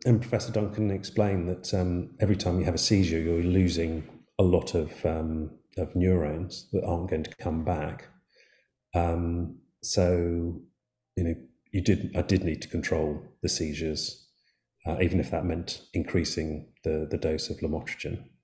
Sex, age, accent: male, 40-59, British